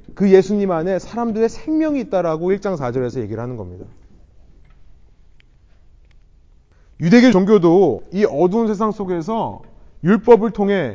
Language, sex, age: Korean, male, 30-49